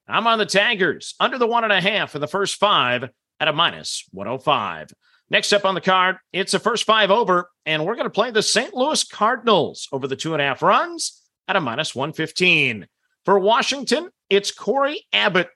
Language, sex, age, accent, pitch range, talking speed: English, male, 40-59, American, 170-215 Hz, 215 wpm